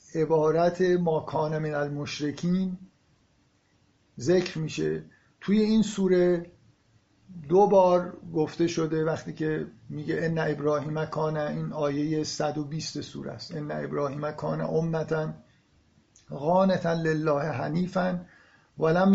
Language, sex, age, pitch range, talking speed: Persian, male, 50-69, 150-185 Hz, 110 wpm